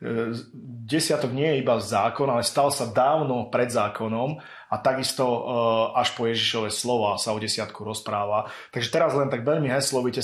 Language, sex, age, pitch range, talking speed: Slovak, male, 30-49, 110-130 Hz, 165 wpm